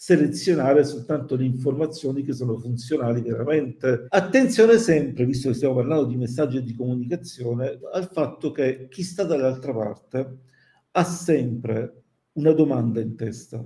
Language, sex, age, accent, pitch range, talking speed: Italian, male, 50-69, native, 125-160 Hz, 140 wpm